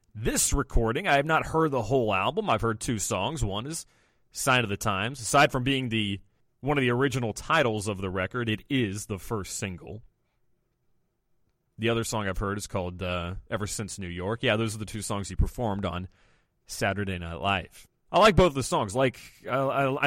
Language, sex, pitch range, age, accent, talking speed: English, male, 100-135 Hz, 30-49, American, 200 wpm